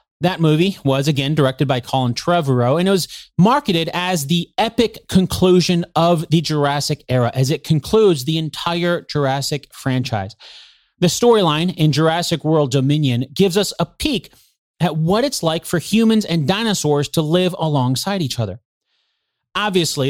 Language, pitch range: English, 135-185 Hz